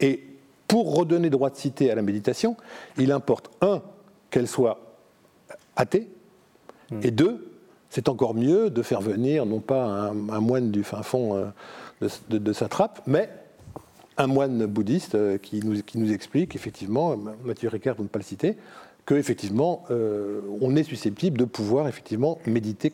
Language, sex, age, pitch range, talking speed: French, male, 50-69, 115-160 Hz, 155 wpm